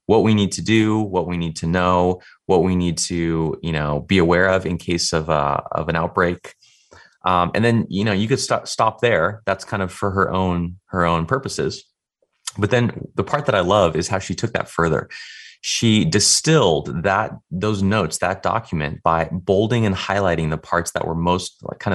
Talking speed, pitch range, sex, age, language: 210 wpm, 90-115 Hz, male, 30-49, English